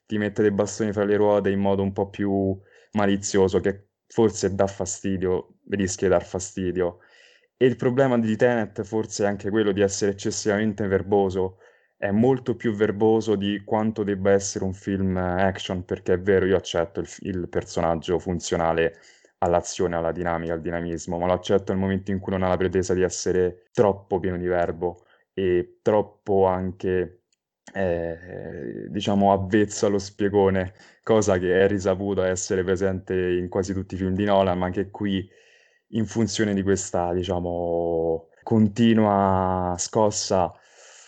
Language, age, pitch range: Italian, 20-39, 95-110 Hz